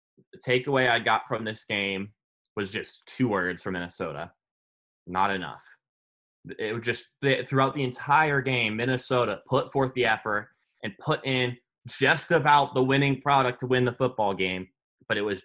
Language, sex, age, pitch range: English, male, 20-39, 110-135 Hz